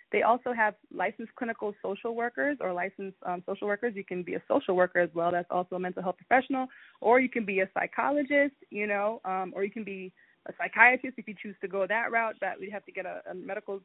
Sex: female